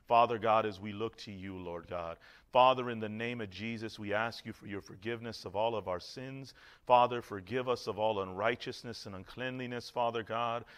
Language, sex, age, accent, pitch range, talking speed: English, male, 40-59, American, 105-130 Hz, 200 wpm